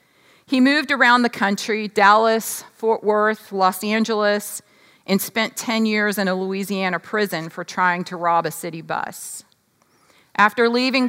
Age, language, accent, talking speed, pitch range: 40-59, English, American, 145 wpm, 175-225 Hz